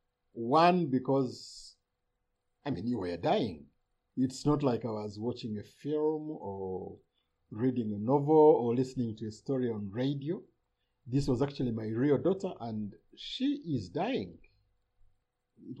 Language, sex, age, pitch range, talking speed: English, male, 50-69, 110-160 Hz, 140 wpm